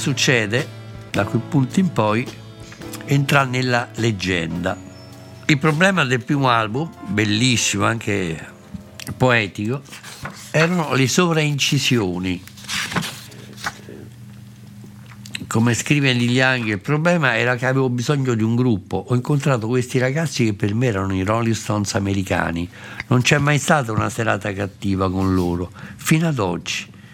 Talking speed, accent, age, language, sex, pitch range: 120 wpm, native, 60-79, Italian, male, 105-130 Hz